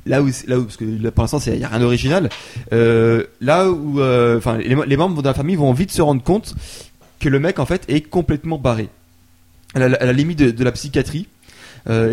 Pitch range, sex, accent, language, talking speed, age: 120-150 Hz, male, French, French, 240 wpm, 20-39